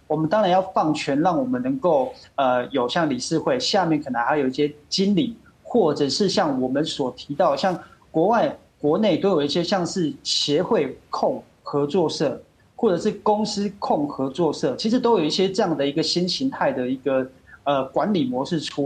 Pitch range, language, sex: 140-195 Hz, Chinese, male